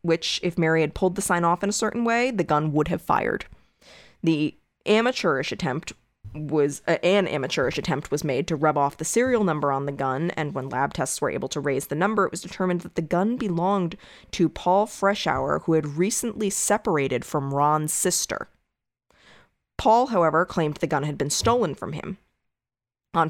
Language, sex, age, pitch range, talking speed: English, female, 20-39, 145-185 Hz, 190 wpm